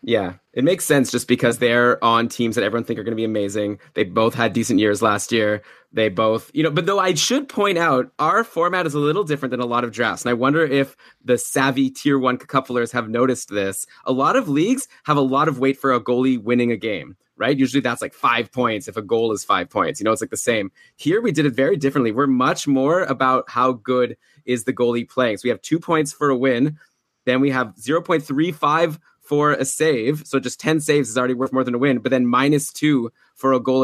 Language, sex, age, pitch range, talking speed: English, male, 20-39, 120-145 Hz, 245 wpm